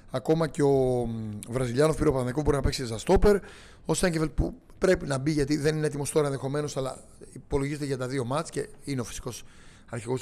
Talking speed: 200 wpm